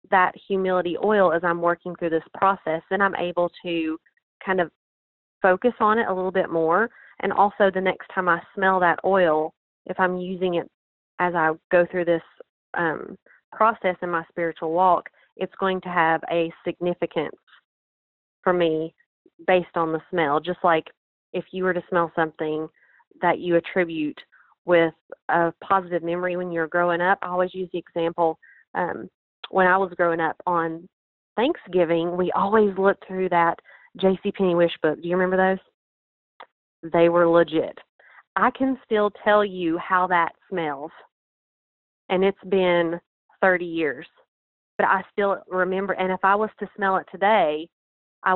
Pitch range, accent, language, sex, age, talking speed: 165-190 Hz, American, English, female, 30-49, 165 wpm